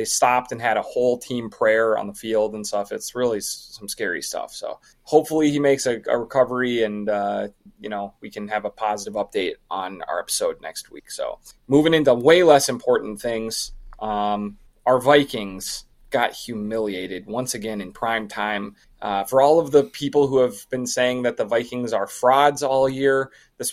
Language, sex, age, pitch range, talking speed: English, male, 20-39, 110-140 Hz, 190 wpm